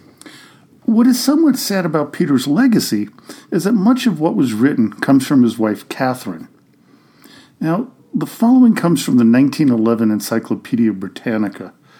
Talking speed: 140 wpm